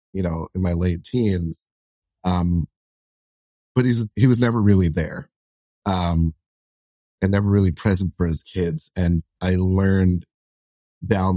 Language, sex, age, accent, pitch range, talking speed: English, male, 30-49, American, 85-95 Hz, 135 wpm